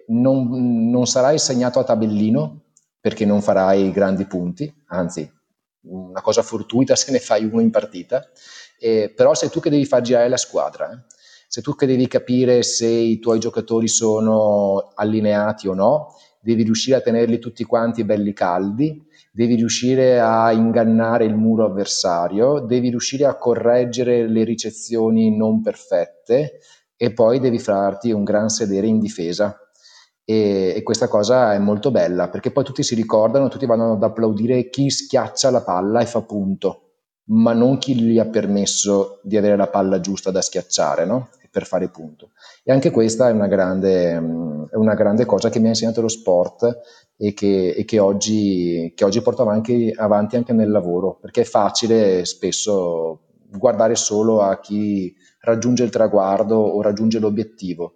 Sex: male